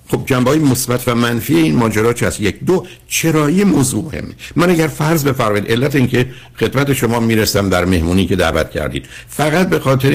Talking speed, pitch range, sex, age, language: 185 wpm, 95-130 Hz, male, 60-79, Persian